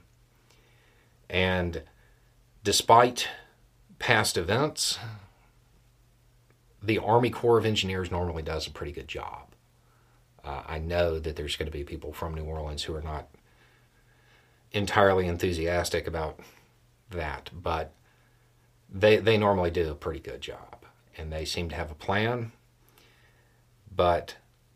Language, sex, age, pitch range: English, male, 40-59, 85-120 Hz